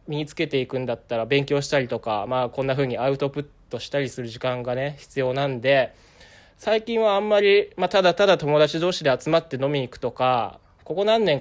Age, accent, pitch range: 20-39, native, 125-165 Hz